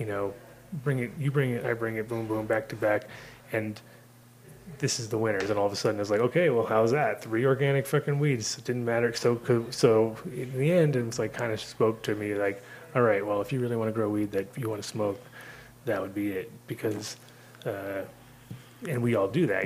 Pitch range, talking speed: 105-130 Hz, 235 wpm